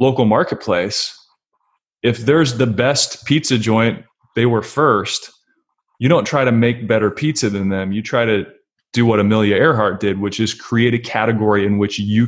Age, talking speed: 20-39, 175 wpm